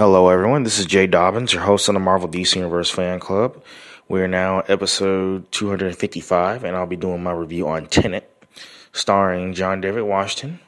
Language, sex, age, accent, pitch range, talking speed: English, male, 20-39, American, 90-115 Hz, 180 wpm